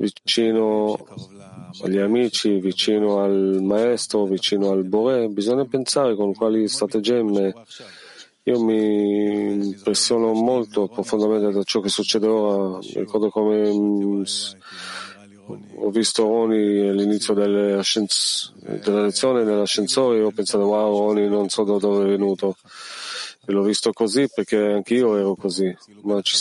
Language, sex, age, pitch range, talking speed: Italian, male, 30-49, 100-115 Hz, 125 wpm